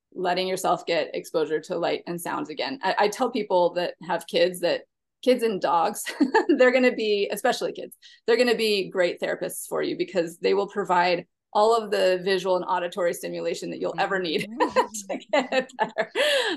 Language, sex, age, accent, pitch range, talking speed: English, female, 20-39, American, 175-225 Hz, 180 wpm